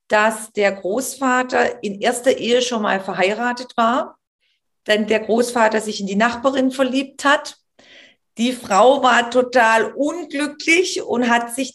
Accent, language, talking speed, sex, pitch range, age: German, German, 140 wpm, female, 205-255 Hz, 40-59